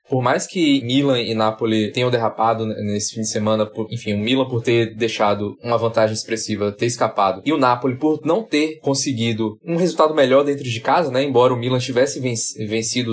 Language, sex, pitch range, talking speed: Portuguese, male, 115-145 Hz, 195 wpm